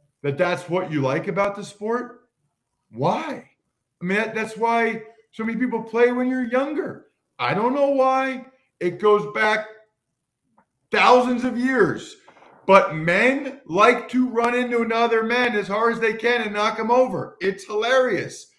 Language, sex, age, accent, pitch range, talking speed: English, male, 40-59, American, 185-245 Hz, 160 wpm